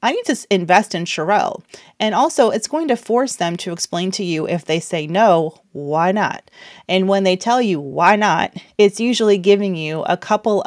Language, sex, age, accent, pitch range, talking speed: English, female, 30-49, American, 180-235 Hz, 200 wpm